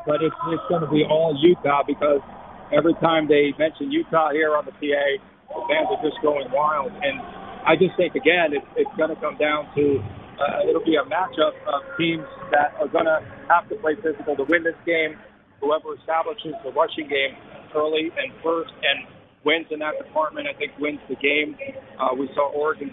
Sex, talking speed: male, 200 wpm